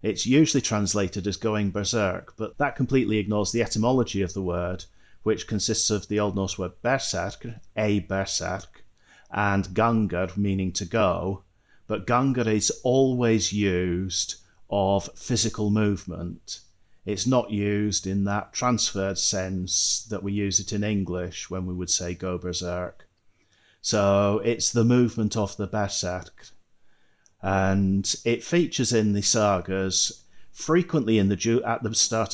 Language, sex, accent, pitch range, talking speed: English, male, British, 95-110 Hz, 145 wpm